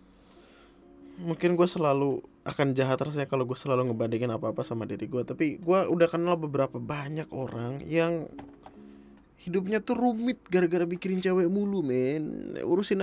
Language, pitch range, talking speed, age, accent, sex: Indonesian, 115-165 Hz, 145 wpm, 20-39, native, male